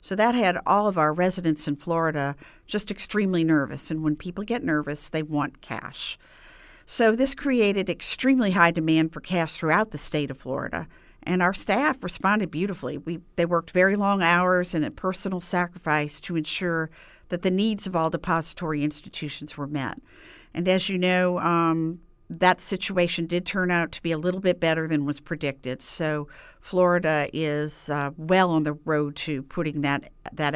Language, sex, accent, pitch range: English, female, American, 150-190 Hz